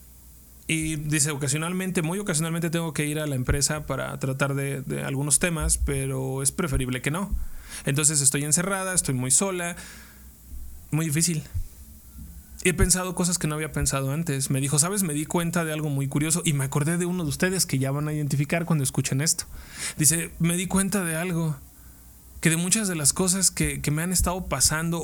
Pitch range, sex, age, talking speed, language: 140-180 Hz, male, 20-39, 195 wpm, Spanish